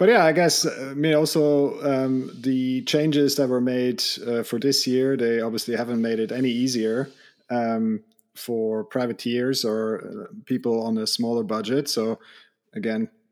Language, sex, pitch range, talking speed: English, male, 110-135 Hz, 155 wpm